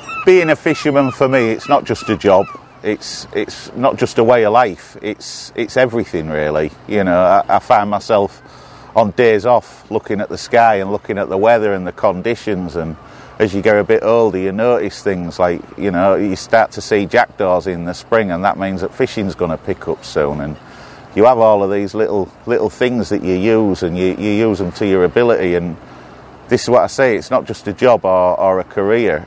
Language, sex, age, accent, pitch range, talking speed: English, male, 40-59, British, 90-110 Hz, 225 wpm